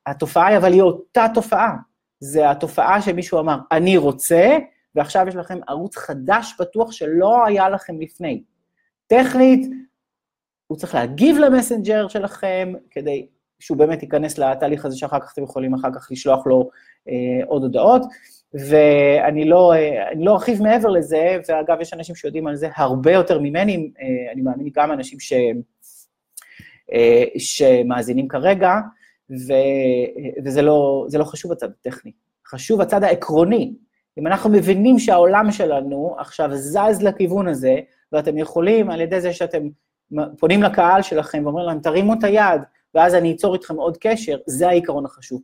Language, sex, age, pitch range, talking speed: English, male, 30-49, 145-205 Hz, 145 wpm